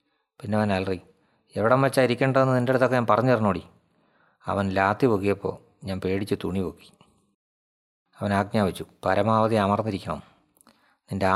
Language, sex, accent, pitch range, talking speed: English, male, Indian, 95-115 Hz, 155 wpm